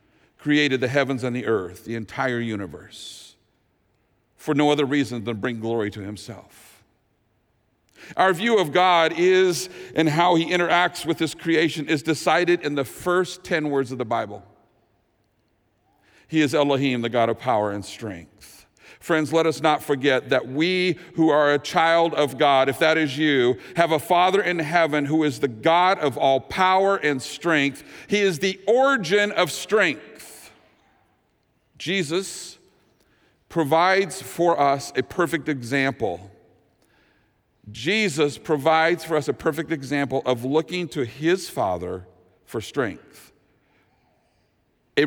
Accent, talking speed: American, 145 wpm